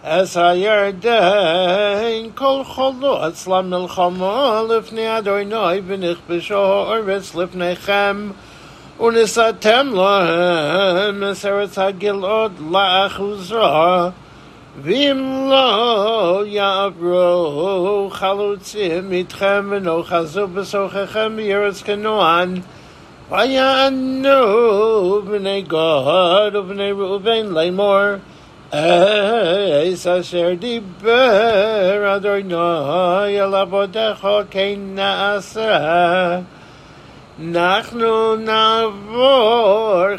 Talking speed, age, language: 80 wpm, 60-79, English